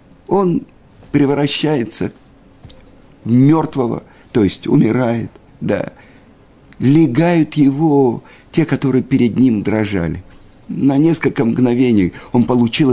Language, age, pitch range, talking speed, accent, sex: Russian, 50-69, 105-145 Hz, 90 wpm, native, male